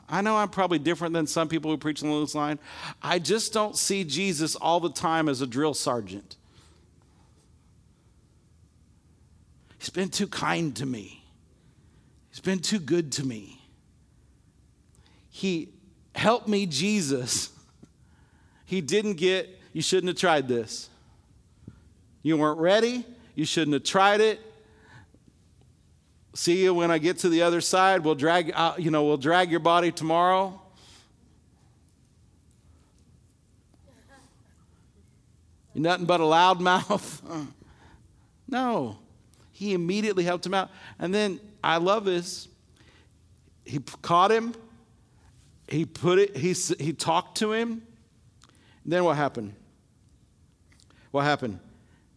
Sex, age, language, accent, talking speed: male, 40-59, English, American, 130 wpm